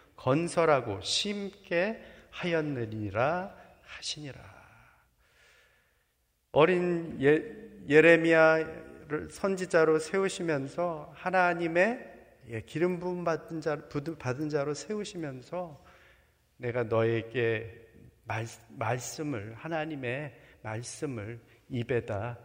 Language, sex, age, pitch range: Korean, male, 40-59, 115-160 Hz